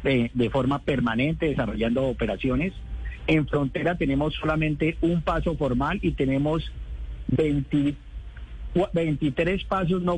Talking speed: 110 wpm